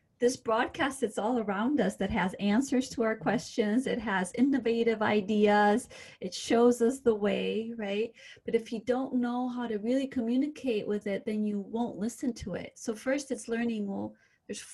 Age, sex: 30-49, female